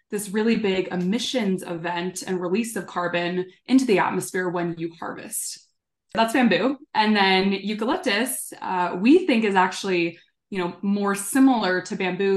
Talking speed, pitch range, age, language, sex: 150 wpm, 175-210 Hz, 20-39, English, female